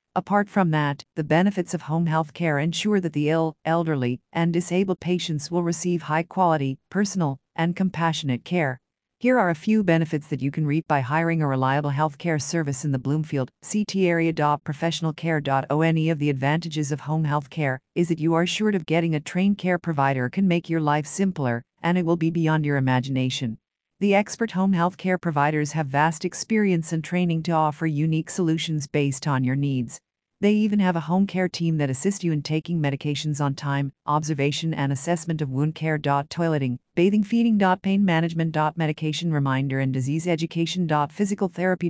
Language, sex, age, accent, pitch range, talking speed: English, female, 50-69, American, 150-180 Hz, 190 wpm